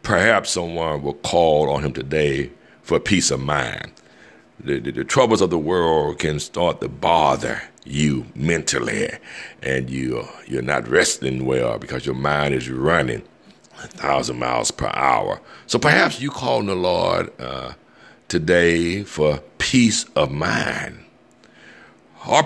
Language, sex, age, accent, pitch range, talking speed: English, male, 60-79, American, 70-85 Hz, 145 wpm